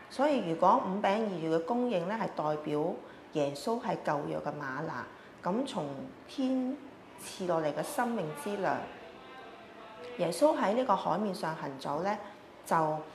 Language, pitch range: Chinese, 155-210 Hz